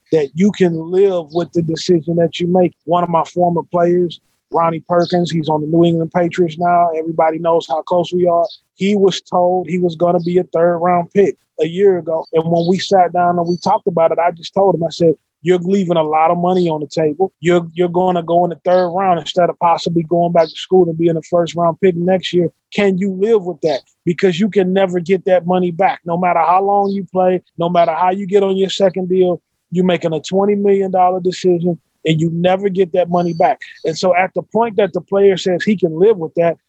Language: English